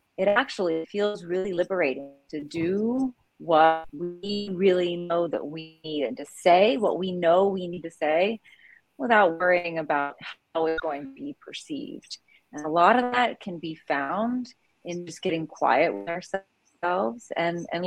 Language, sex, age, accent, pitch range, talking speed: English, female, 30-49, American, 160-210 Hz, 165 wpm